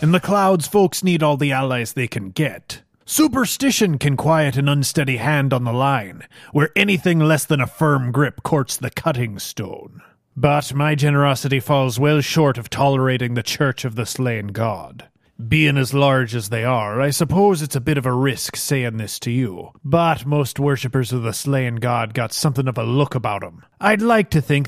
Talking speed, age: 195 wpm, 30-49